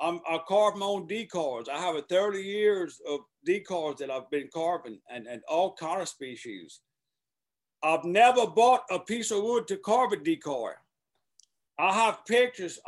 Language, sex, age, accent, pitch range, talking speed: English, male, 60-79, American, 165-230 Hz, 170 wpm